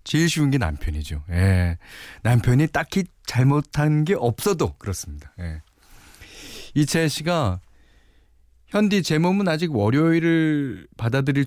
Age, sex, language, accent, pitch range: 40-59, male, Korean, native, 90-150 Hz